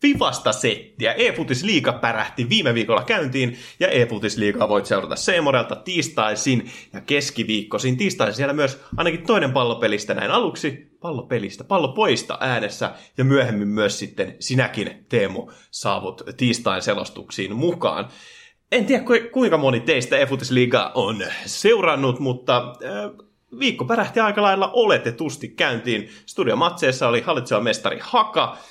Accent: native